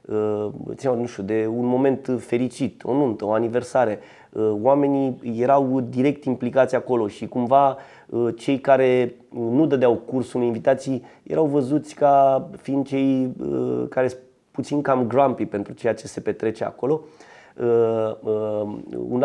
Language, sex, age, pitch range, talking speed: Romanian, male, 30-49, 115-135 Hz, 120 wpm